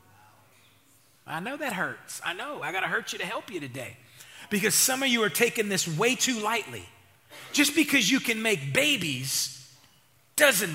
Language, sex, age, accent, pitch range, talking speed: English, male, 40-59, American, 135-215 Hz, 180 wpm